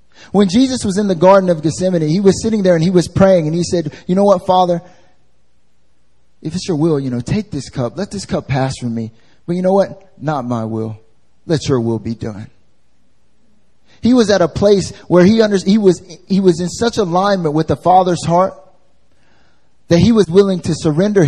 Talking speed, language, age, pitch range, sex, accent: 210 wpm, English, 30-49, 110-180 Hz, male, American